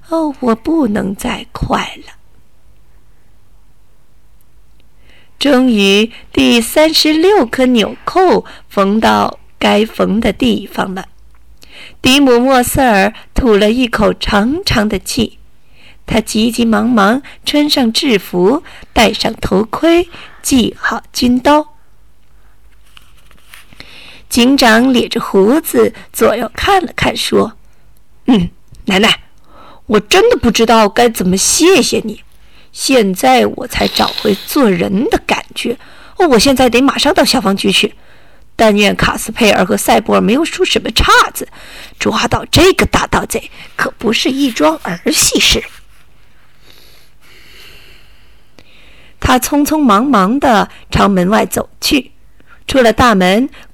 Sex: female